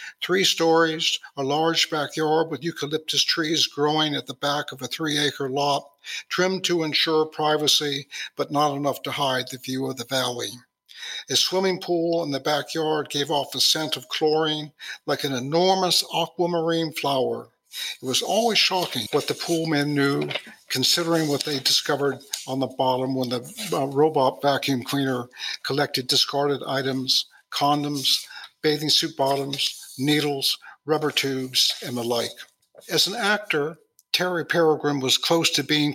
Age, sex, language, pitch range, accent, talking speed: 60-79, male, English, 135-160 Hz, American, 150 wpm